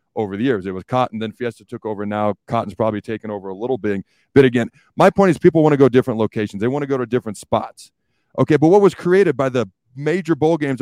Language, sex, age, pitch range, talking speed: English, male, 40-59, 115-145 Hz, 260 wpm